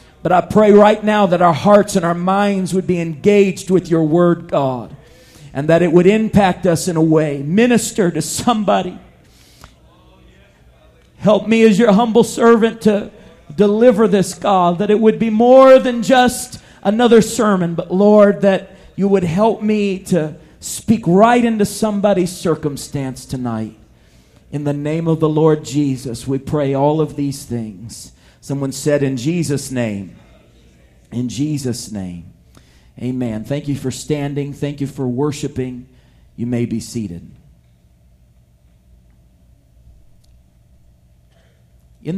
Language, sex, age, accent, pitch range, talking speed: English, male, 40-59, American, 115-195 Hz, 140 wpm